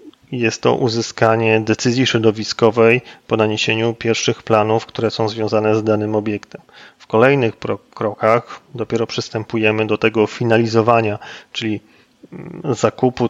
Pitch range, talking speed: 110-120 Hz, 115 wpm